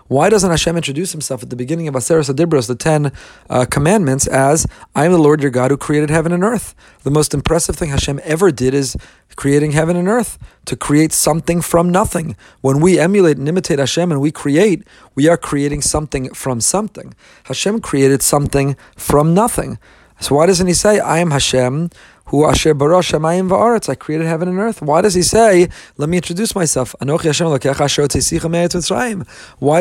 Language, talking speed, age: English, 175 wpm, 30-49